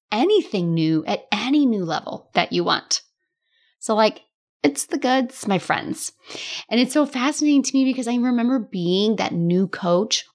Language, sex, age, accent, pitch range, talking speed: English, female, 30-49, American, 180-280 Hz, 170 wpm